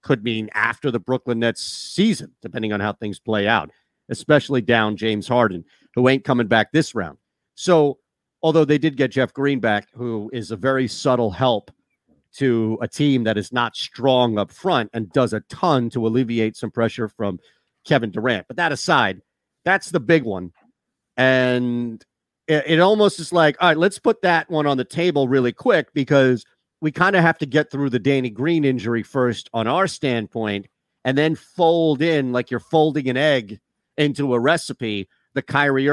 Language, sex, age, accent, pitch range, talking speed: English, male, 40-59, American, 115-145 Hz, 185 wpm